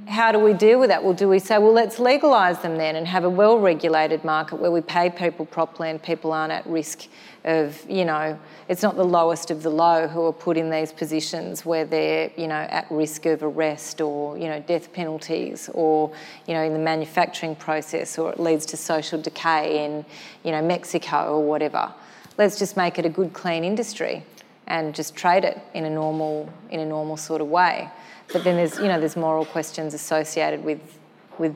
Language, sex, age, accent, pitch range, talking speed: English, female, 30-49, Australian, 155-185 Hz, 205 wpm